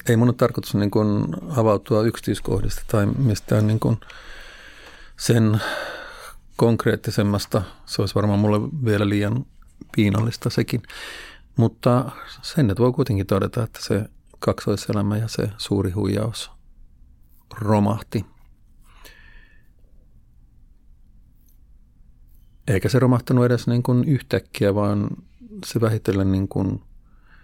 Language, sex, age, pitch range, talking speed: Finnish, male, 50-69, 95-120 Hz, 85 wpm